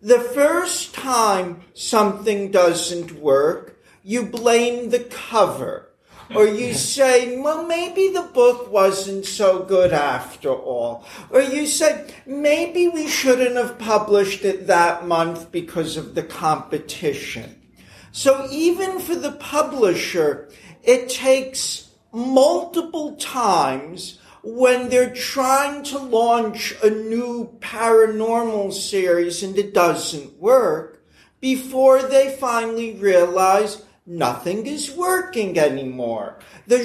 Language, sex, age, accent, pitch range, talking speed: English, male, 50-69, American, 190-270 Hz, 110 wpm